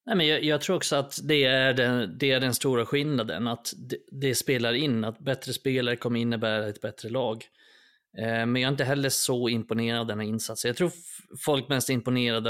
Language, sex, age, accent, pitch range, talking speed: Swedish, male, 30-49, native, 115-135 Hz, 215 wpm